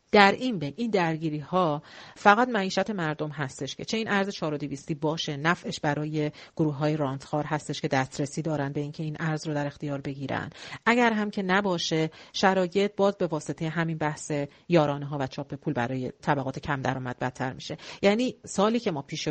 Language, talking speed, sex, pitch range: Persian, 185 wpm, female, 145-180 Hz